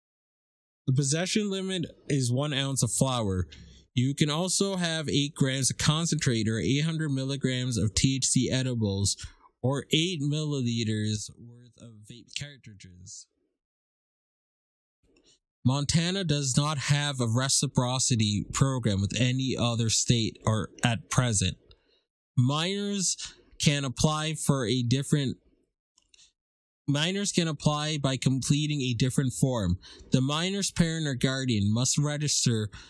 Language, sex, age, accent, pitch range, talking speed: English, male, 20-39, American, 115-150 Hz, 115 wpm